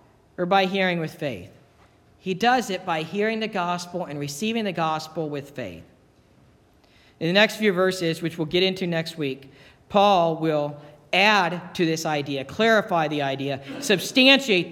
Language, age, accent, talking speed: English, 50-69, American, 160 wpm